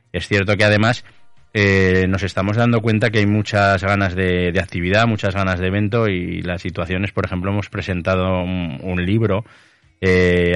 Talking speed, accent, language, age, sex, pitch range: 175 wpm, Spanish, Spanish, 20-39, male, 95-105 Hz